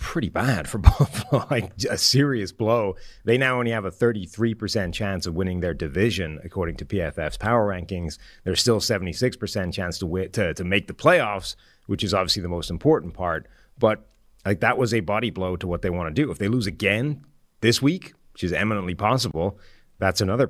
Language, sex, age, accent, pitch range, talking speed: English, male, 30-49, American, 90-115 Hz, 200 wpm